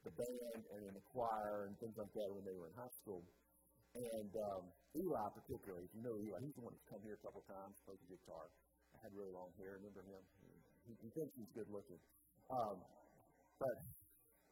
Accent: American